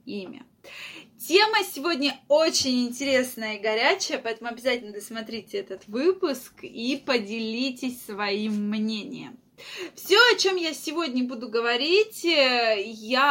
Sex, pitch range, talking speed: female, 225-300 Hz, 110 wpm